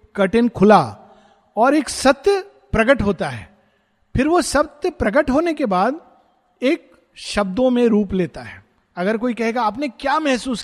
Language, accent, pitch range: Hindi, native, 170-240 Hz